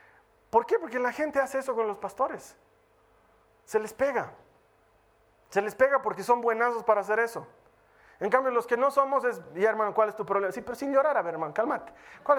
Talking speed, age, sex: 215 wpm, 30-49, male